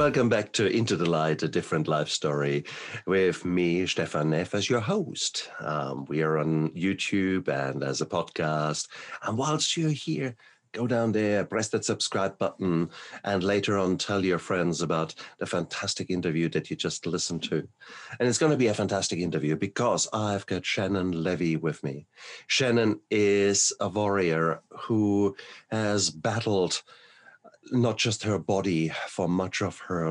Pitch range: 85-105 Hz